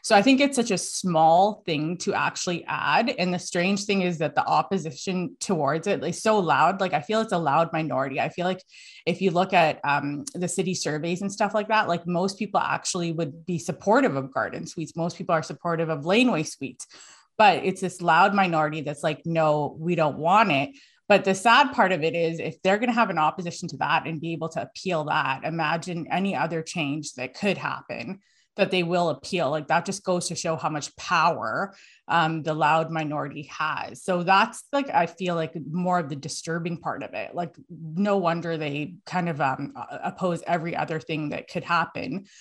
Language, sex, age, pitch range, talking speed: English, female, 20-39, 160-190 Hz, 210 wpm